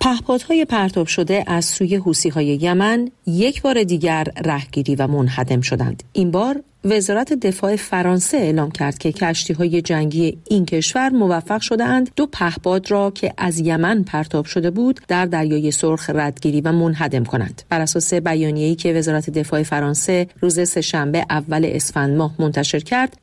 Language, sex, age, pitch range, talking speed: Persian, female, 40-59, 150-200 Hz, 150 wpm